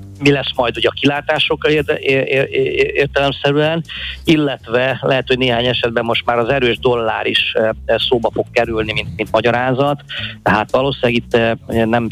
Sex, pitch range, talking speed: male, 110-135 Hz, 180 wpm